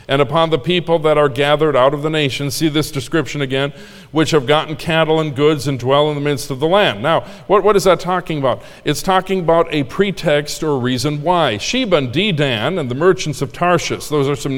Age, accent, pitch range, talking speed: 50-69, American, 145-185 Hz, 225 wpm